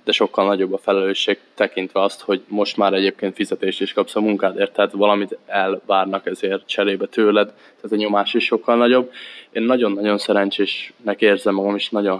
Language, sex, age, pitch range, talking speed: Hungarian, male, 20-39, 100-105 Hz, 170 wpm